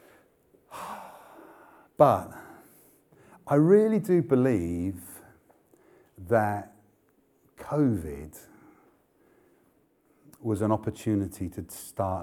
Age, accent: 50-69, British